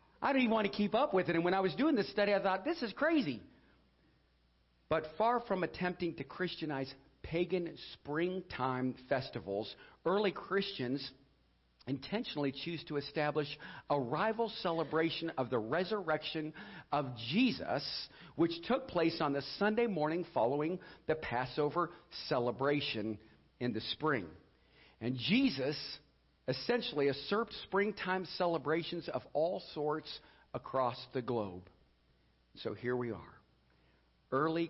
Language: English